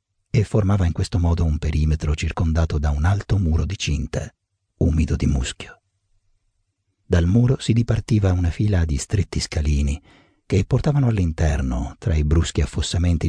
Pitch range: 80-100 Hz